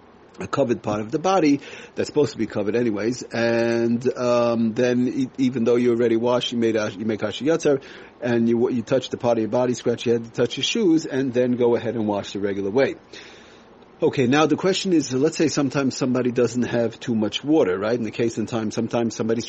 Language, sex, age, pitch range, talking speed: English, male, 40-59, 110-130 Hz, 215 wpm